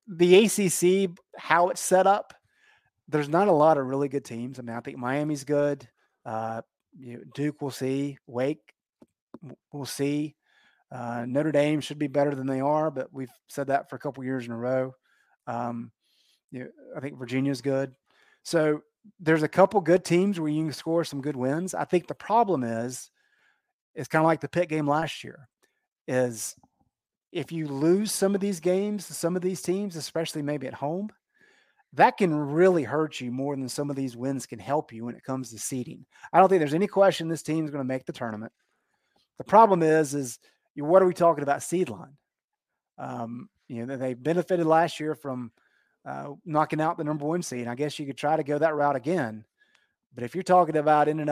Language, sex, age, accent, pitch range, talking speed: English, male, 30-49, American, 130-165 Hz, 205 wpm